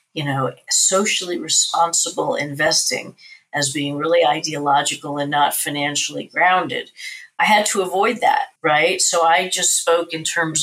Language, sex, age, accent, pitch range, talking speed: English, female, 50-69, American, 160-210 Hz, 140 wpm